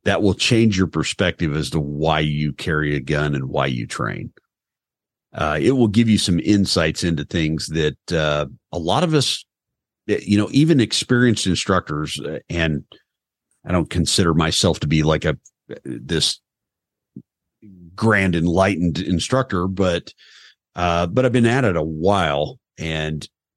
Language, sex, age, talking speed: English, male, 50-69, 150 wpm